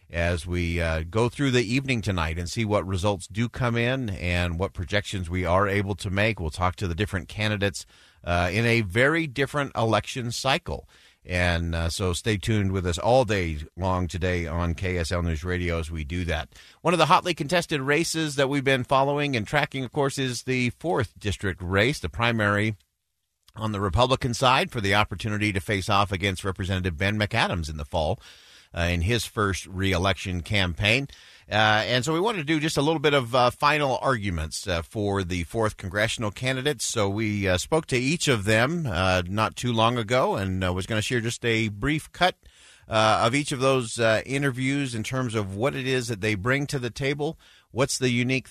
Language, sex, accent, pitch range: English, male, American, 95-130 Hz